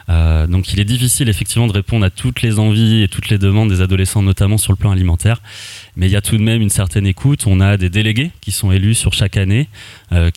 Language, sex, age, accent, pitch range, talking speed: French, male, 20-39, French, 95-110 Hz, 255 wpm